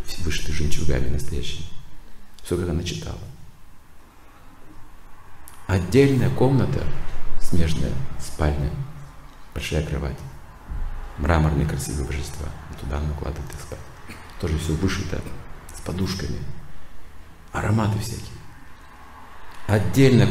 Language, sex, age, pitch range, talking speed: Russian, male, 50-69, 75-95 Hz, 85 wpm